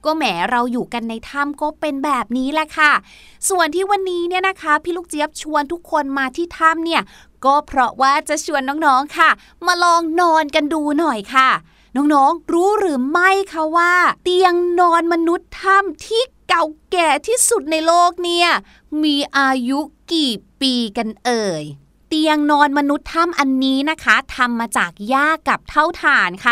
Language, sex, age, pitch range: Thai, female, 20-39, 255-330 Hz